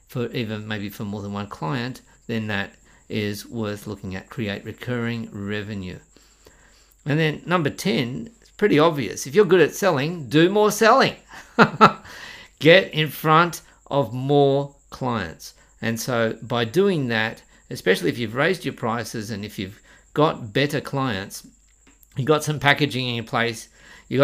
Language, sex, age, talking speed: English, male, 50-69, 155 wpm